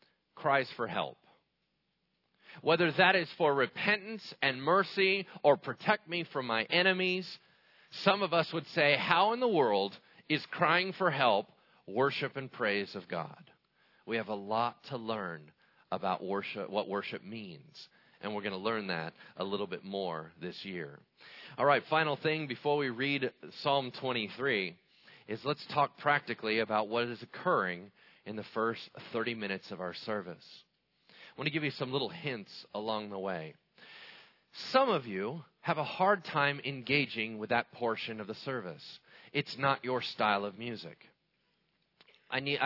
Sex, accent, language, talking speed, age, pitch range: male, American, English, 160 wpm, 40-59, 115-165 Hz